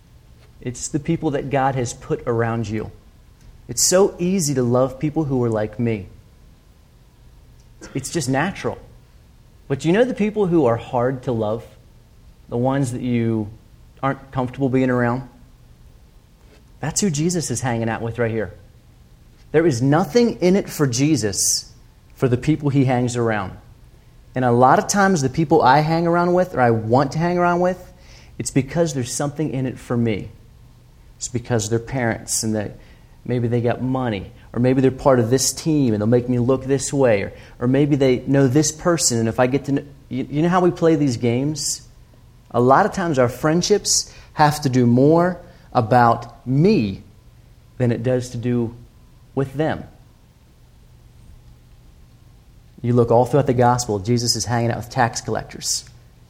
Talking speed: 175 wpm